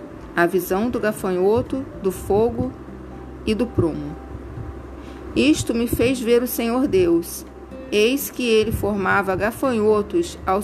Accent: Brazilian